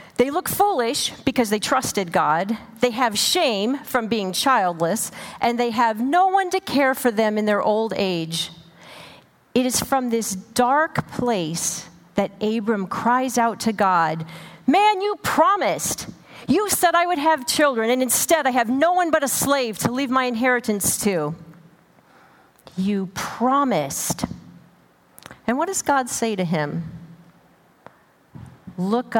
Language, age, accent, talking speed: English, 40-59, American, 145 wpm